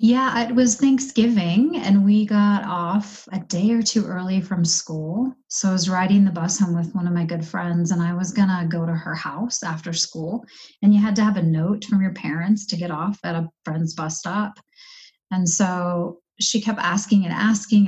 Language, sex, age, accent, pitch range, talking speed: English, female, 30-49, American, 175-210 Hz, 210 wpm